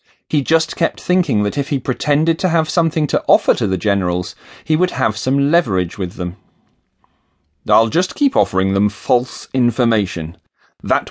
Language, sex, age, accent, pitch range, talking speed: English, male, 40-59, British, 100-155 Hz, 165 wpm